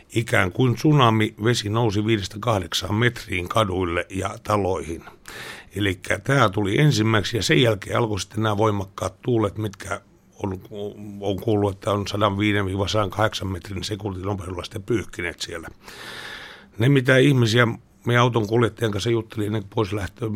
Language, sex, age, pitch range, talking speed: Finnish, male, 60-79, 100-115 Hz, 135 wpm